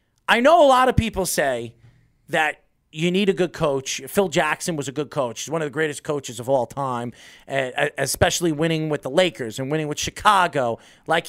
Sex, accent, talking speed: male, American, 200 wpm